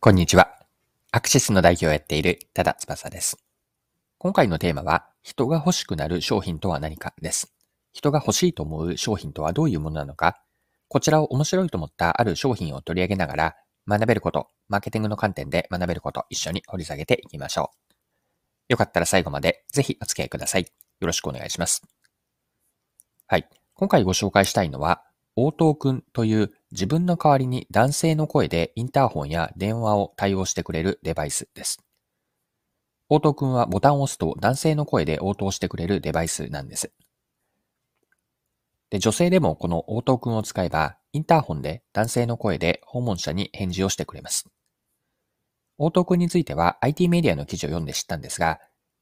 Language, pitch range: Japanese, 90-140 Hz